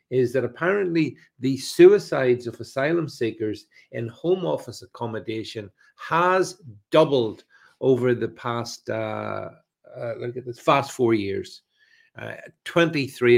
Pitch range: 110-135 Hz